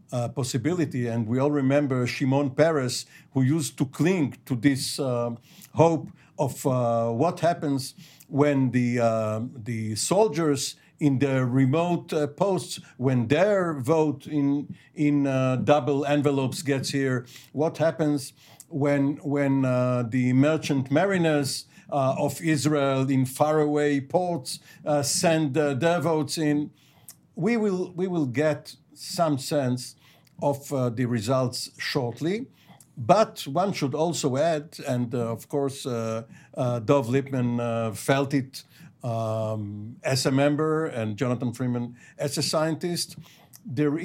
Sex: male